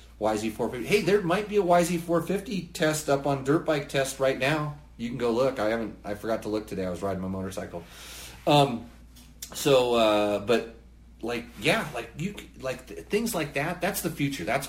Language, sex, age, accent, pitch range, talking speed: English, male, 30-49, American, 85-135 Hz, 195 wpm